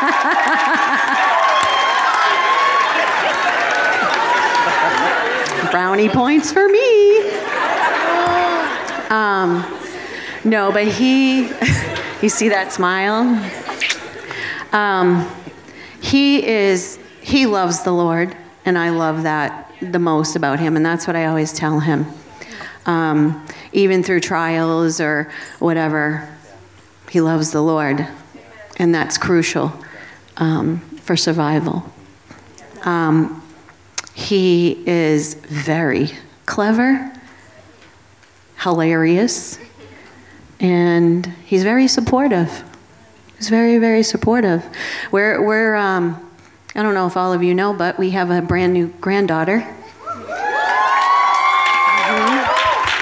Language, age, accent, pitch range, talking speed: English, 40-59, American, 155-215 Hz, 95 wpm